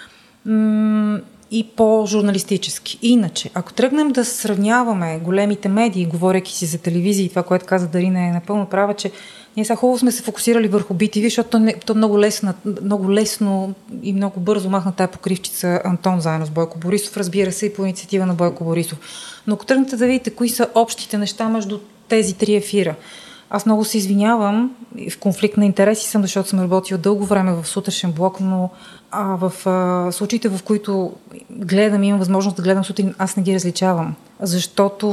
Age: 30-49